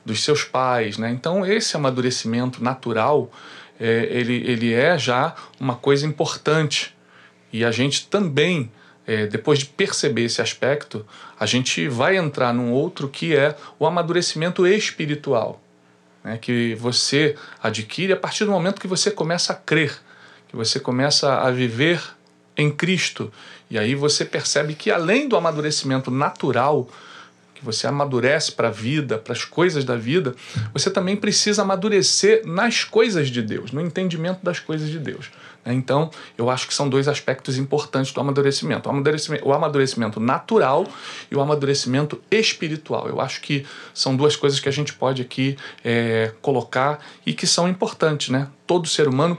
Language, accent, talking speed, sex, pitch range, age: Portuguese, Brazilian, 155 wpm, male, 120-160 Hz, 40-59